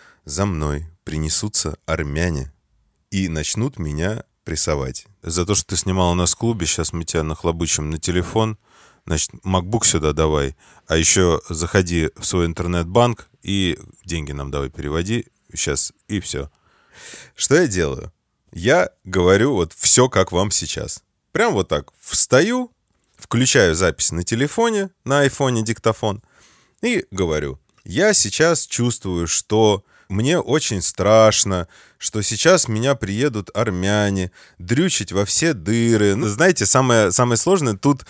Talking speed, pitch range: 135 wpm, 90-125 Hz